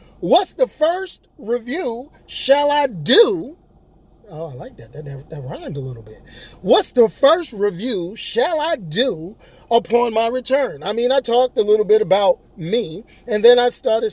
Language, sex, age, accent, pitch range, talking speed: English, male, 40-59, American, 185-270 Hz, 170 wpm